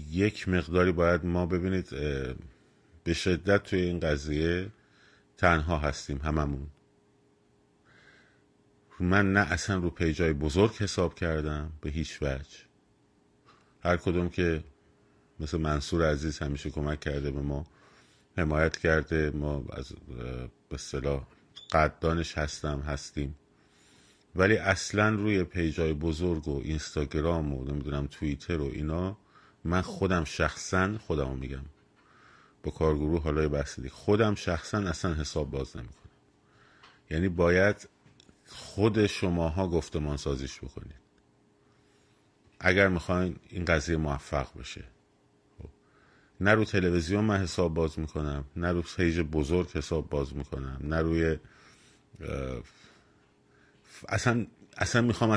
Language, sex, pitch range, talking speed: Persian, male, 75-90 Hz, 115 wpm